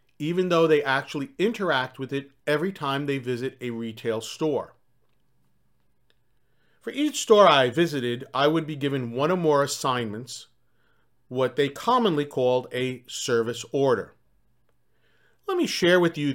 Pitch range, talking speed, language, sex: 125-170 Hz, 145 wpm, English, male